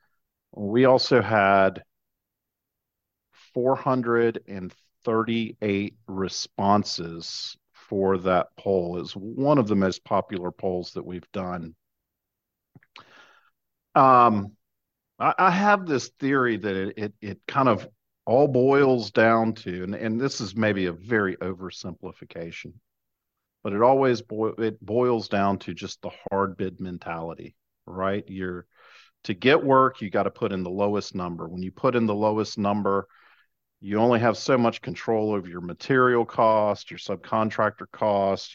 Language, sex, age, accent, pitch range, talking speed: English, male, 50-69, American, 90-115 Hz, 135 wpm